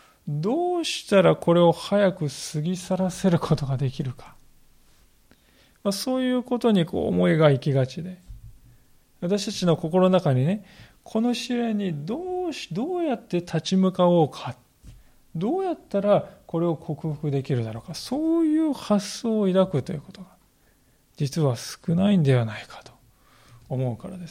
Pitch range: 140-195 Hz